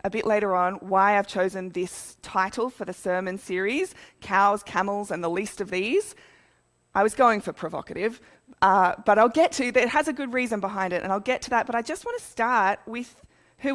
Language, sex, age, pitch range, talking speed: English, female, 20-39, 190-250 Hz, 225 wpm